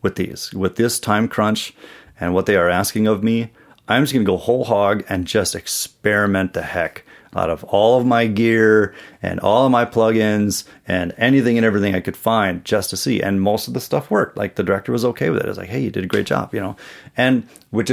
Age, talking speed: 30-49, 235 wpm